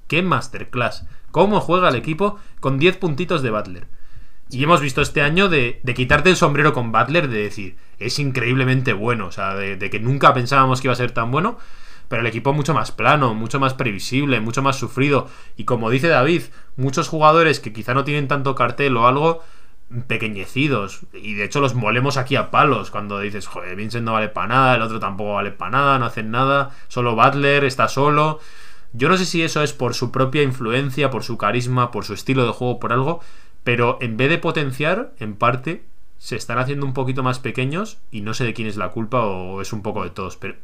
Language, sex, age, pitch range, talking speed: Spanish, male, 20-39, 110-145 Hz, 215 wpm